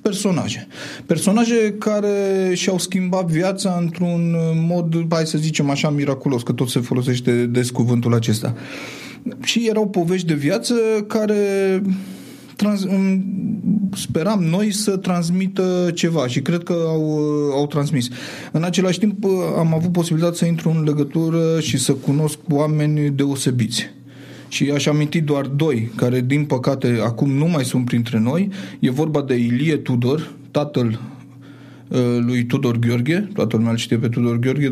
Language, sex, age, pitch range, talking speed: Romanian, male, 30-49, 130-170 Hz, 145 wpm